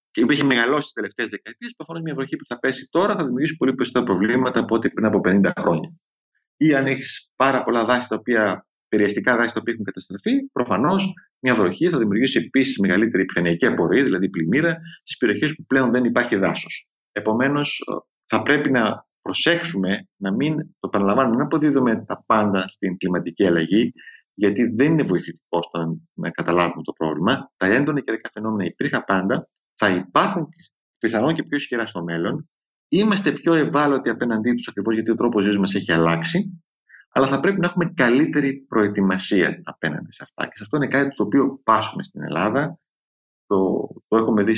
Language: Greek